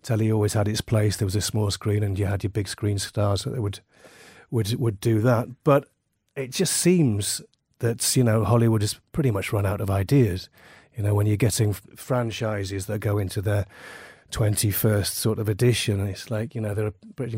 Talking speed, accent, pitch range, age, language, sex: 200 wpm, British, 105-120 Hz, 30-49, English, male